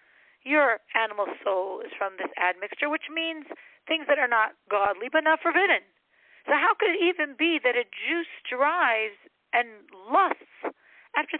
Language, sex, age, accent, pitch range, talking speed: English, female, 40-59, American, 230-320 Hz, 160 wpm